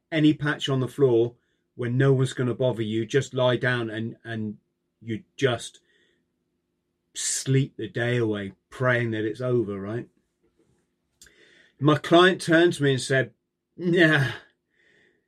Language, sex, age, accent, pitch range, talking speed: English, male, 30-49, British, 115-140 Hz, 140 wpm